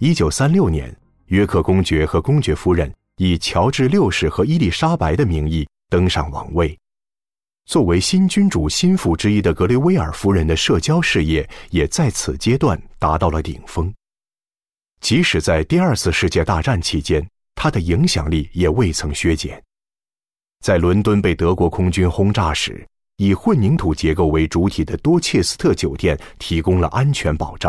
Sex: male